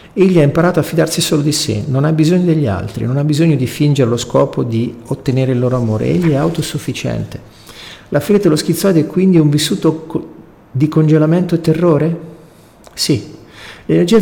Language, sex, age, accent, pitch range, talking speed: Italian, male, 40-59, native, 125-165 Hz, 175 wpm